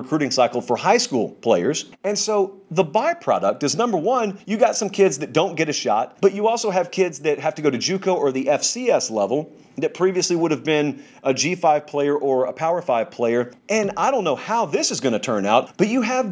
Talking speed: 235 wpm